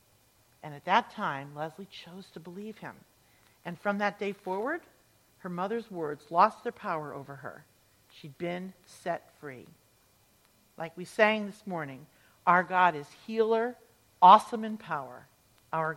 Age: 50-69